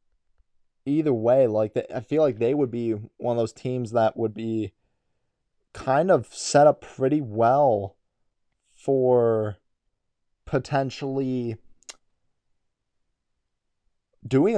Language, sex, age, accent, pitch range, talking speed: English, male, 20-39, American, 110-140 Hz, 105 wpm